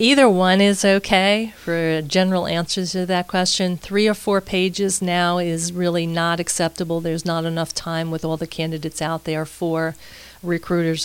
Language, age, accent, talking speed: English, 40-59, American, 170 wpm